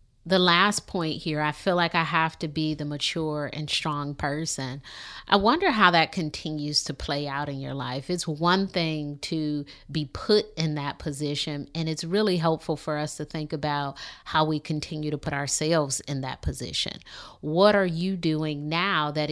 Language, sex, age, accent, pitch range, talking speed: English, female, 30-49, American, 150-185 Hz, 185 wpm